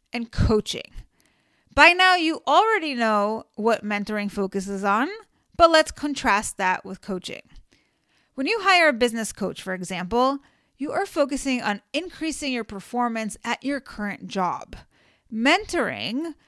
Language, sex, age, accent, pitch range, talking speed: English, female, 30-49, American, 215-285 Hz, 135 wpm